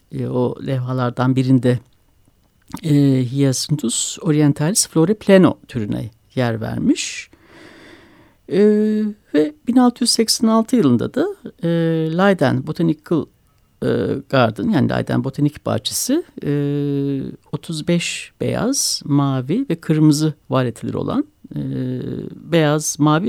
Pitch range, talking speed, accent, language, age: 130-205 Hz, 95 wpm, native, Turkish, 60-79